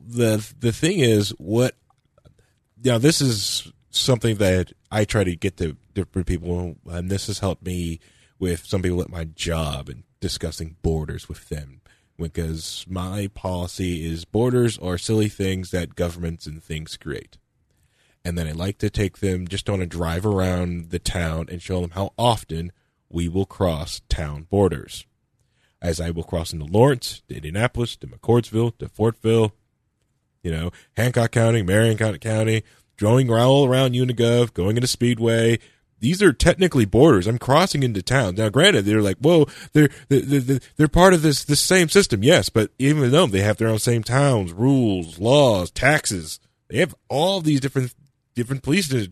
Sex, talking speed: male, 170 wpm